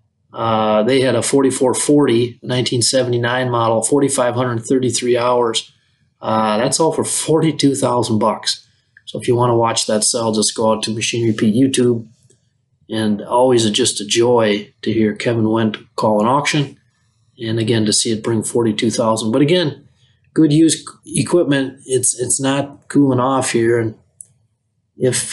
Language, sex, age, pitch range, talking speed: English, male, 30-49, 115-135 Hz, 145 wpm